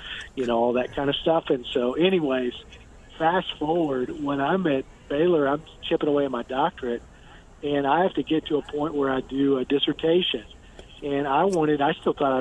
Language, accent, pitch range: English, American, 125-150 Hz